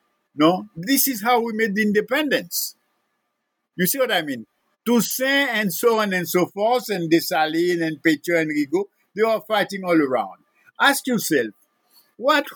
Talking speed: 160 wpm